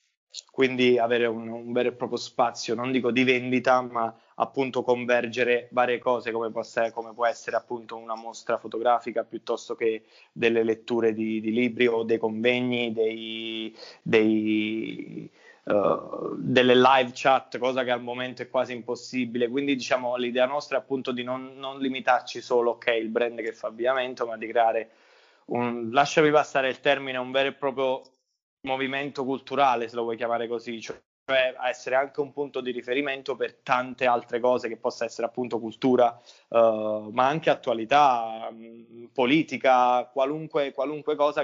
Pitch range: 115-130 Hz